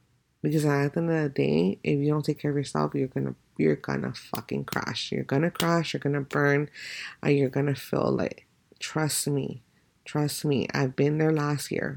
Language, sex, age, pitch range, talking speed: English, female, 30-49, 135-165 Hz, 225 wpm